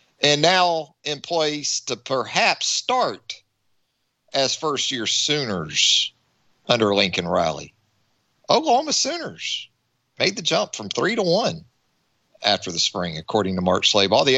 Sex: male